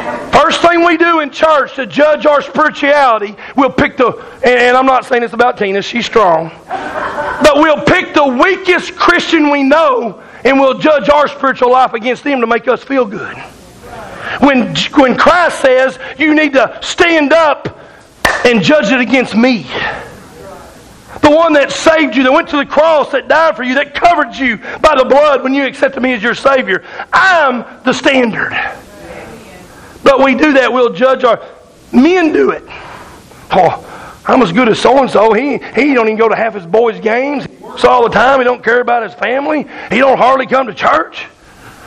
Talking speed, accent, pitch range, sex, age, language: 185 wpm, American, 250-300 Hz, male, 40-59, English